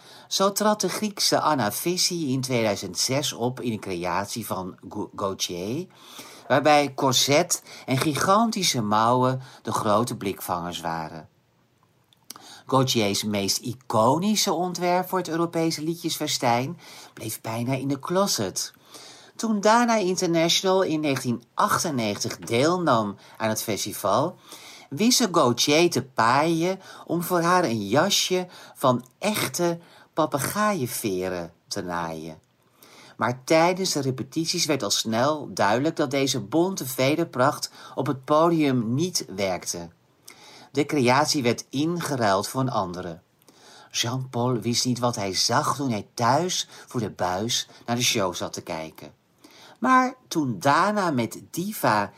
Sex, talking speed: male, 120 wpm